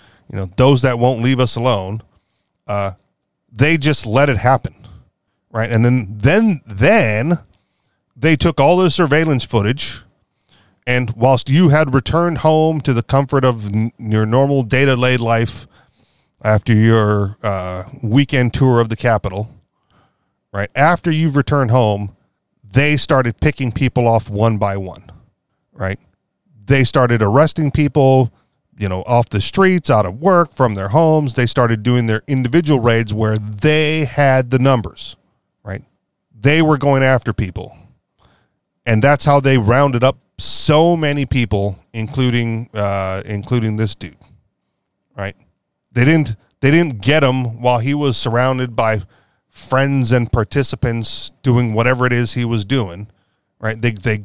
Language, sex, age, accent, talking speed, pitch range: English, male, 40-59, American, 150 wpm, 110-140 Hz